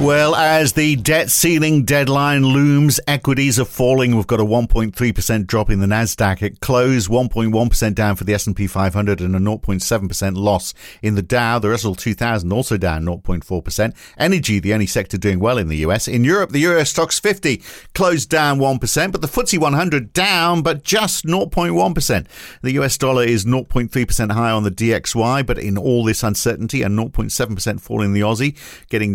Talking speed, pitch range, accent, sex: 175 wpm, 105-145 Hz, British, male